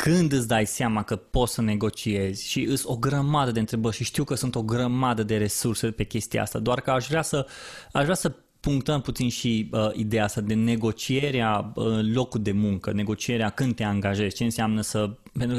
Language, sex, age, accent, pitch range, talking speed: Romanian, male, 20-39, native, 110-140 Hz, 205 wpm